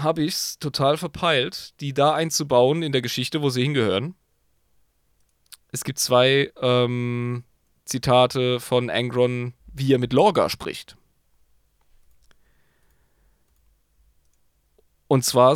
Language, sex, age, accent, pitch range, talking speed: German, male, 30-49, German, 120-185 Hz, 110 wpm